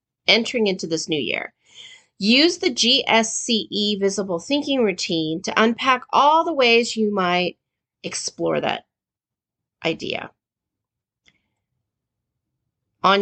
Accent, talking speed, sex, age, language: American, 100 wpm, female, 30-49, English